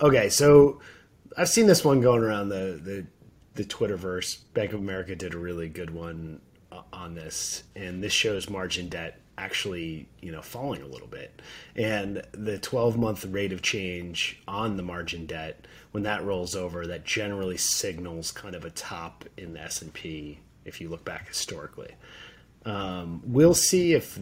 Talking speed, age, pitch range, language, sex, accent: 170 wpm, 30-49, 85-105 Hz, English, male, American